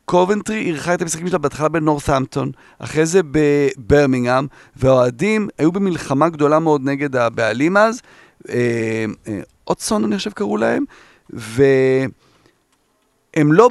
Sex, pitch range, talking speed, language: male, 140-190 Hz, 120 wpm, Hebrew